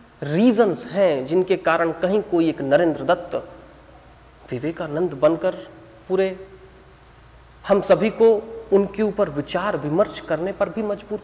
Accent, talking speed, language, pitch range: native, 125 wpm, Hindi, 160-215 Hz